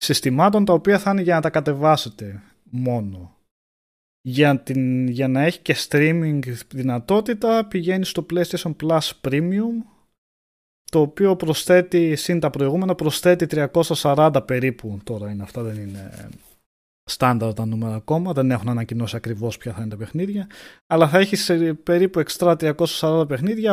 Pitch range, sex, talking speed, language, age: 115-175 Hz, male, 135 wpm, Greek, 20-39